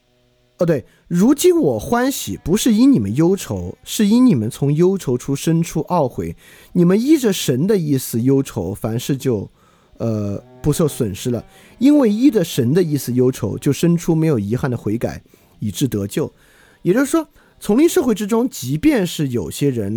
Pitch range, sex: 120-175 Hz, male